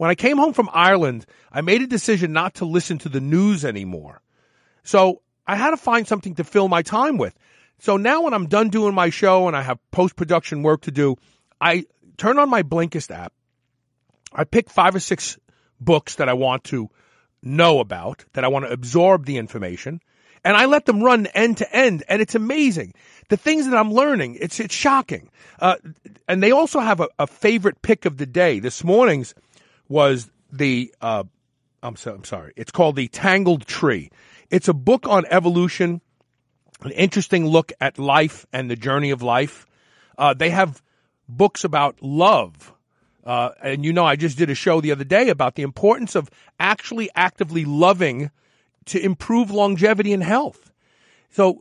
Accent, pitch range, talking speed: American, 140-200 Hz, 185 wpm